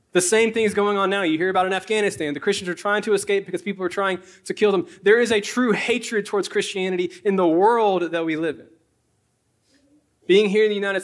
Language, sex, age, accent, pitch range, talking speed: English, male, 20-39, American, 175-225 Hz, 240 wpm